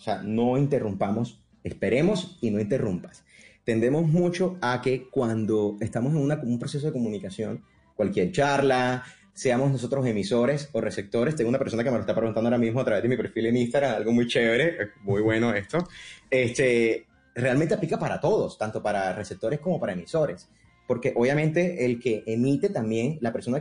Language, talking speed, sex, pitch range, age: Spanish, 175 wpm, male, 110-140 Hz, 30-49